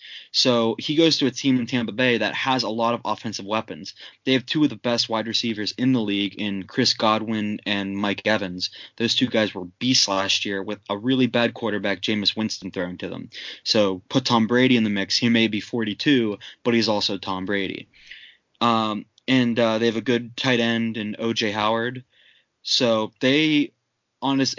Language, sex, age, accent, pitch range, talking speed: English, male, 20-39, American, 105-125 Hz, 200 wpm